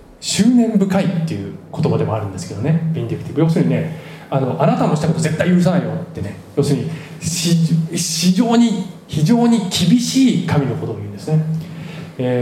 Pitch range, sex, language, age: 145-175 Hz, male, Japanese, 20-39